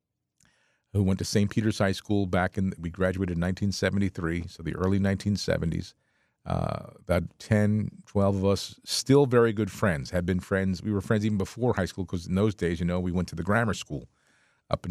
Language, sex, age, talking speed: English, male, 40-59, 205 wpm